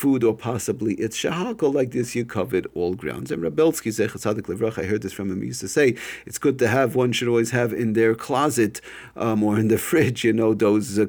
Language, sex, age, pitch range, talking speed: English, male, 50-69, 105-130 Hz, 235 wpm